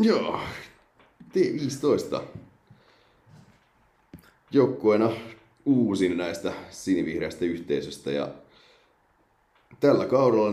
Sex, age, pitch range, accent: male, 30-49, 75-95 Hz, native